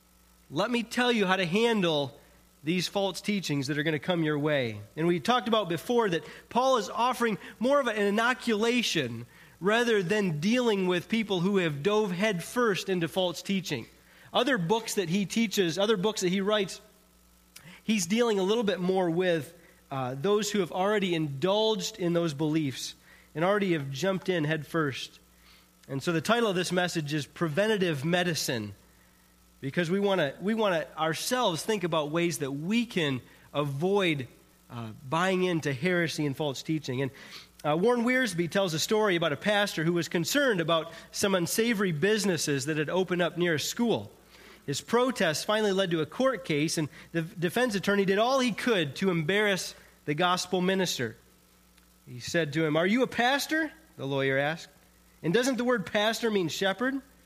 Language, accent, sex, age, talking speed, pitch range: English, American, male, 30-49, 175 wpm, 155-210 Hz